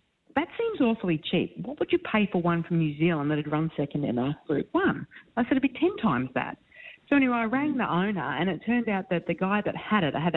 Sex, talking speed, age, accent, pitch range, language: female, 265 wpm, 40-59, Australian, 150-190 Hz, English